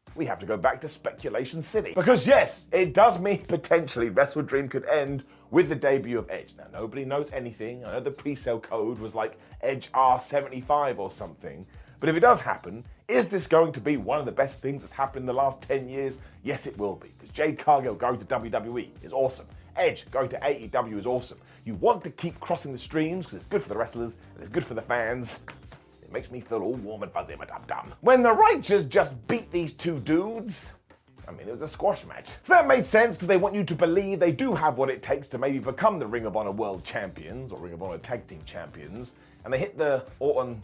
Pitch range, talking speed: 130-180 Hz, 235 wpm